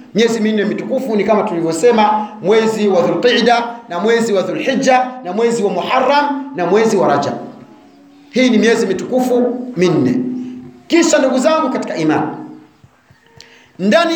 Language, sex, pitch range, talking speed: Swahili, male, 210-265 Hz, 135 wpm